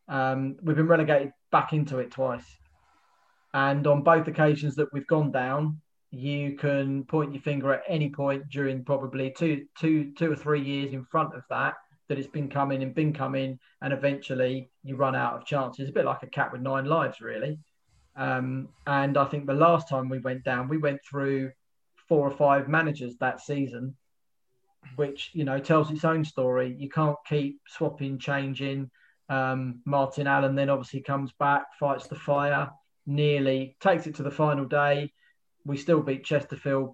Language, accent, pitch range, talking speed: English, British, 135-150 Hz, 180 wpm